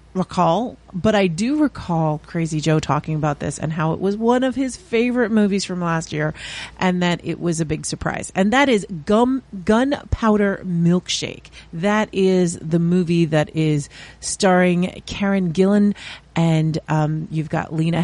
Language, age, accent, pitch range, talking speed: English, 30-49, American, 155-205 Hz, 160 wpm